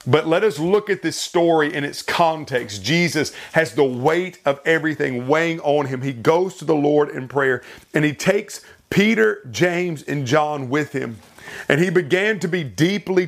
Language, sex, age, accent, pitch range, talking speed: English, male, 40-59, American, 140-180 Hz, 185 wpm